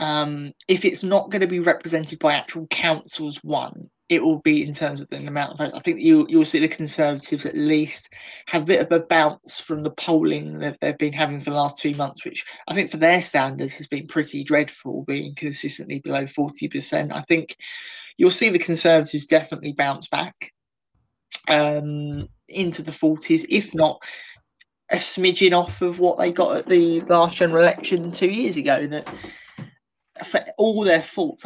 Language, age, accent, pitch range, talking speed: English, 20-39, British, 150-175 Hz, 185 wpm